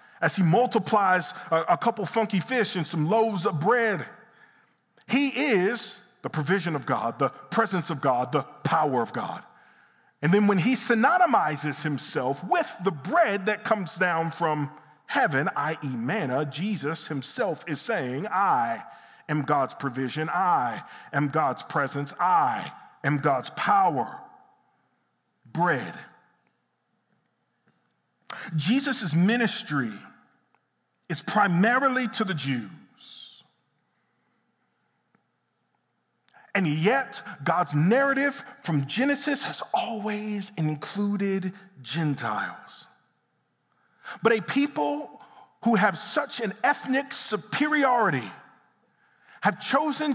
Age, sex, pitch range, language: 40-59, male, 155-235 Hz, English